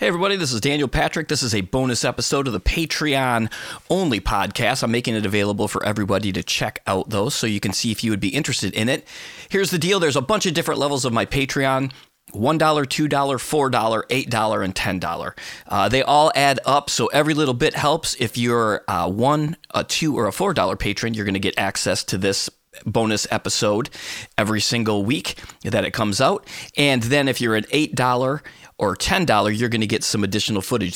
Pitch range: 95-130 Hz